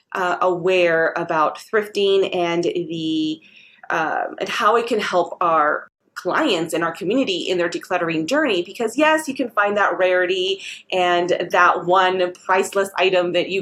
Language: English